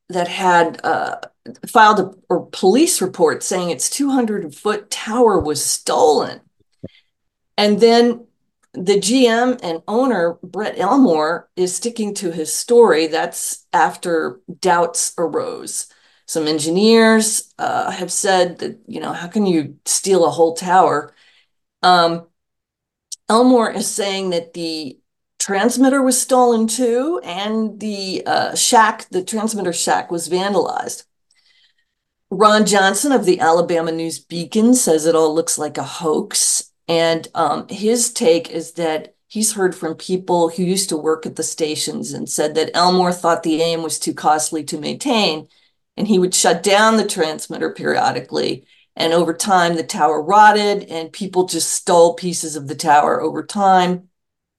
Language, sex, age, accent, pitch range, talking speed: English, female, 40-59, American, 165-220 Hz, 145 wpm